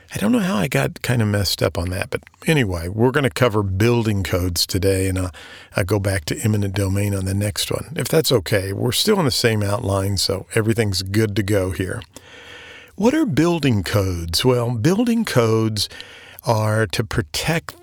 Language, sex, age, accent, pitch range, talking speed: English, male, 50-69, American, 100-130 Hz, 190 wpm